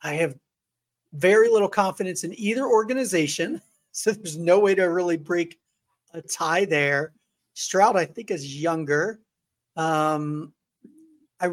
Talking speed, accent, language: 130 wpm, American, English